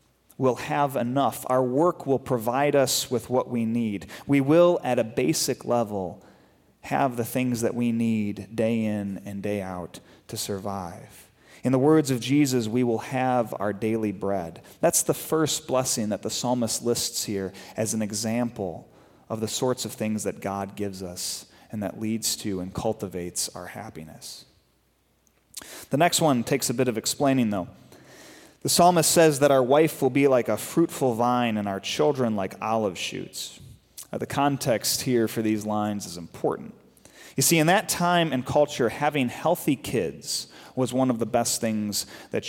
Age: 30-49